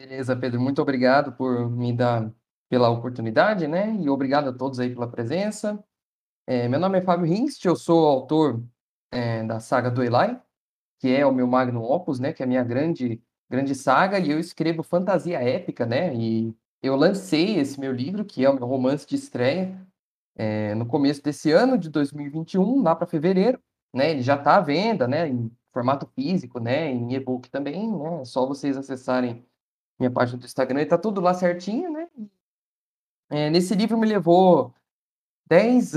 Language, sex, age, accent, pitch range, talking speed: Portuguese, male, 20-39, Brazilian, 130-180 Hz, 180 wpm